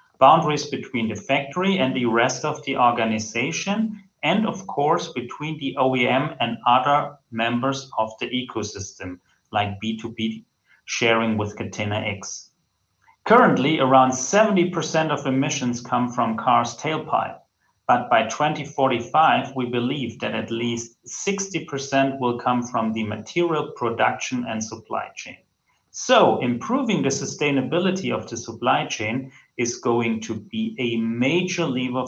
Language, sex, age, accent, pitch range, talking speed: English, male, 40-59, German, 110-135 Hz, 130 wpm